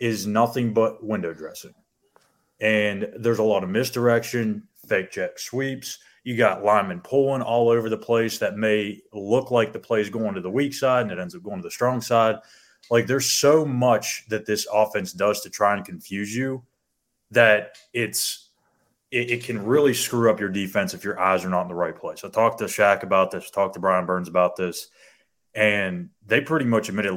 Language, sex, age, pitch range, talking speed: English, male, 30-49, 100-120 Hz, 205 wpm